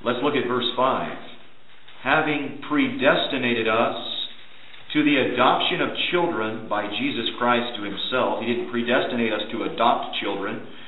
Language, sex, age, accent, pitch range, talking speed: English, male, 40-59, American, 120-170 Hz, 140 wpm